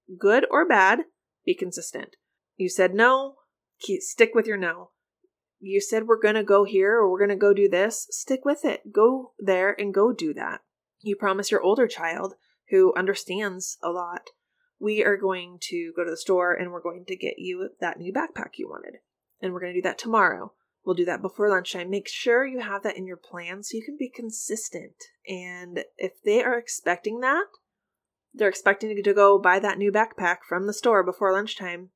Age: 20-39